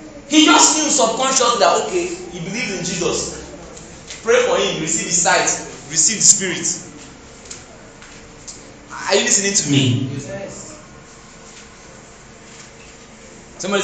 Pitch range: 135-190 Hz